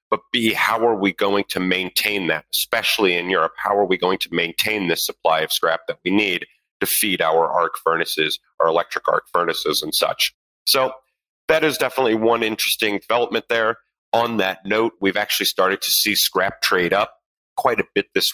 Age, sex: 30-49, male